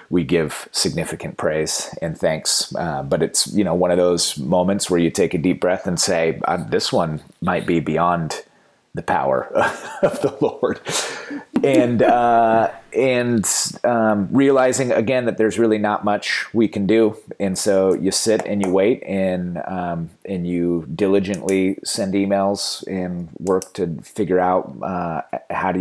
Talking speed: 160 wpm